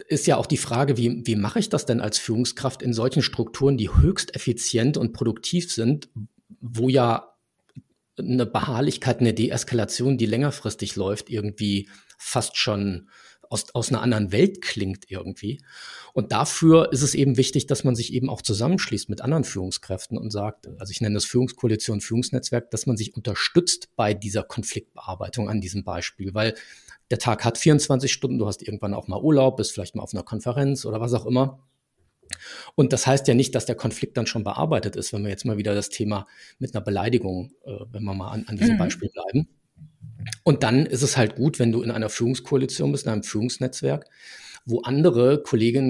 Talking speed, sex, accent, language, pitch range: 190 wpm, male, German, German, 105-130 Hz